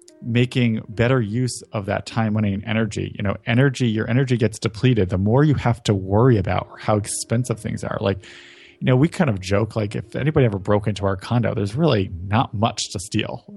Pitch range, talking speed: 105-130 Hz, 210 wpm